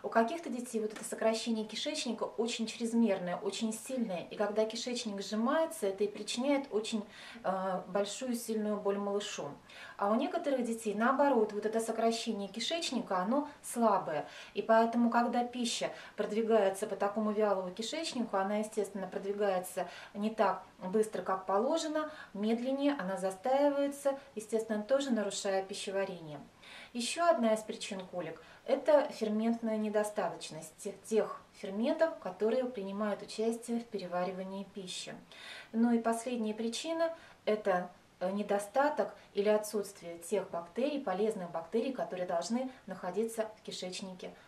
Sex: female